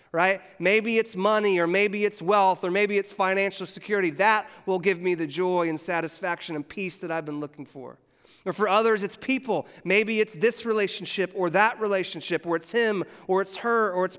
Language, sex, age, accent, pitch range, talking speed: English, male, 30-49, American, 165-205 Hz, 205 wpm